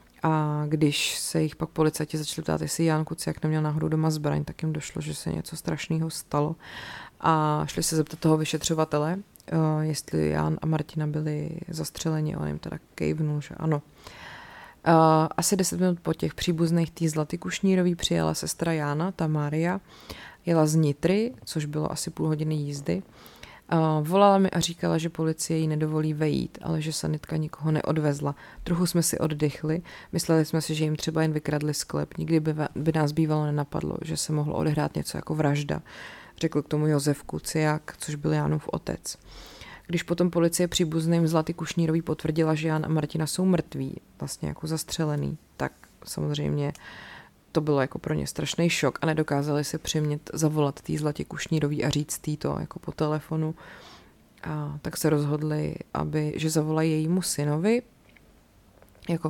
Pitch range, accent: 150-160 Hz, native